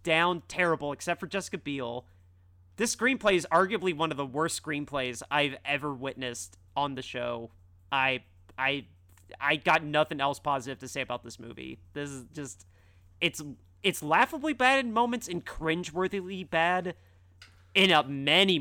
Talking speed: 155 wpm